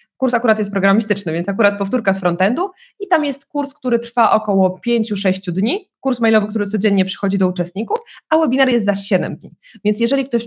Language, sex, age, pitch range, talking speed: Polish, female, 20-39, 195-245 Hz, 195 wpm